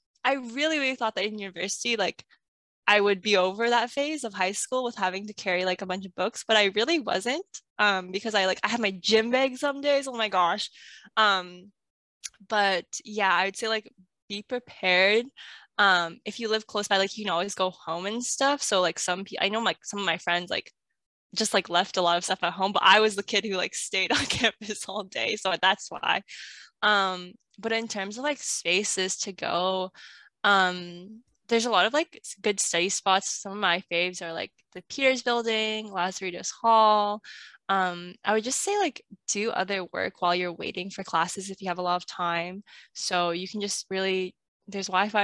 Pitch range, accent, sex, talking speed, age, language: 185-225 Hz, American, female, 210 wpm, 10-29, English